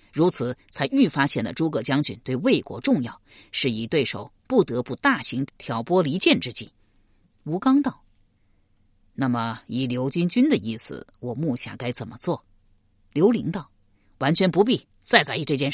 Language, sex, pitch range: Chinese, female, 110-165 Hz